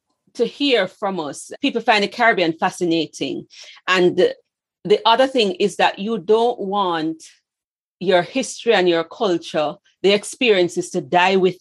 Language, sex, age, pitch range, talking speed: English, female, 40-59, 175-225 Hz, 150 wpm